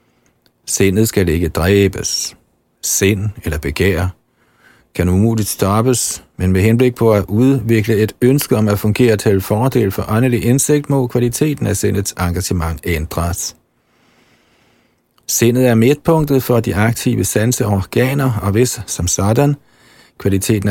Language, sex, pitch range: Danish, male, 95-125 Hz